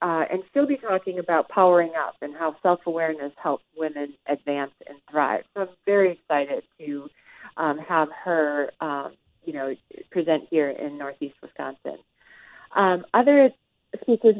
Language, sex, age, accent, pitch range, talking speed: English, female, 40-59, American, 160-195 Hz, 145 wpm